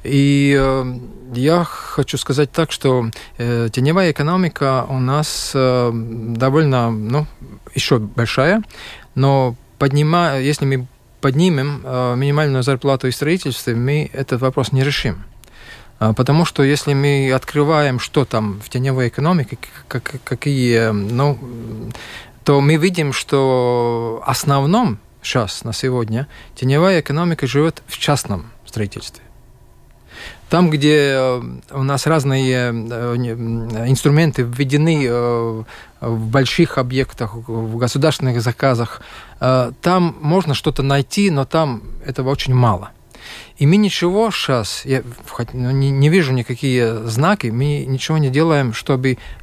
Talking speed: 110 wpm